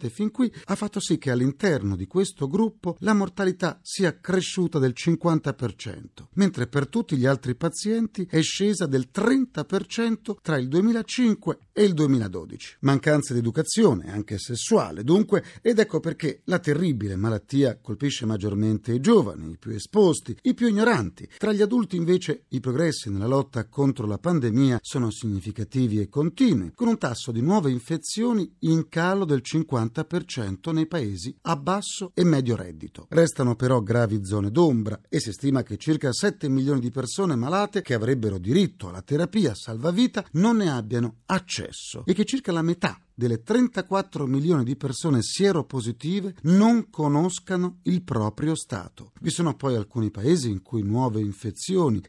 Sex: male